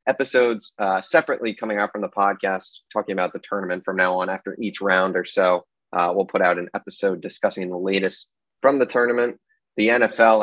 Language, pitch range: English, 95-115 Hz